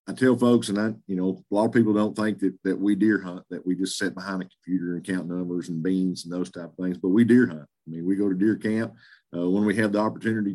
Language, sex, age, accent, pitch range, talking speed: English, male, 50-69, American, 90-120 Hz, 295 wpm